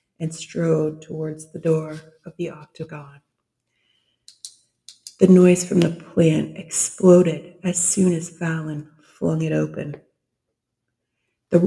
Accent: American